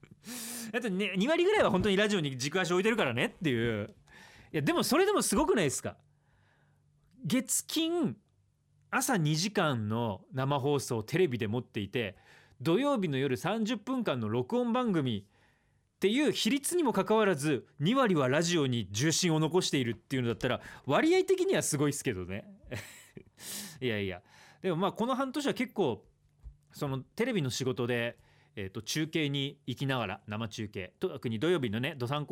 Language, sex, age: Japanese, male, 40-59